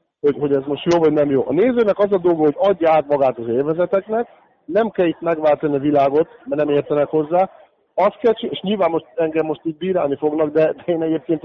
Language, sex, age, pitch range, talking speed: Hungarian, male, 50-69, 140-165 Hz, 225 wpm